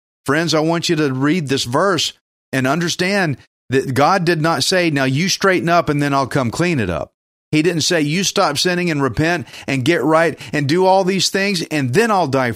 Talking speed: 220 wpm